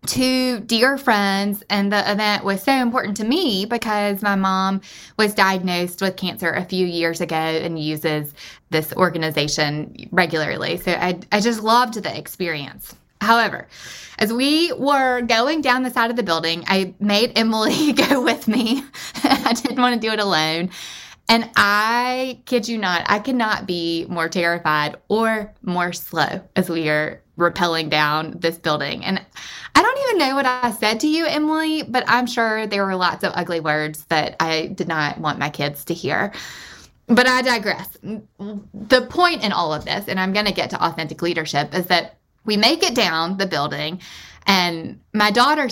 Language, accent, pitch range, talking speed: English, American, 170-235 Hz, 180 wpm